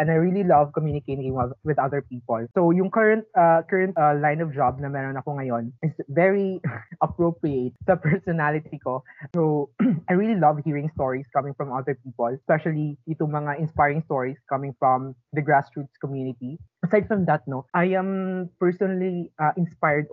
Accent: native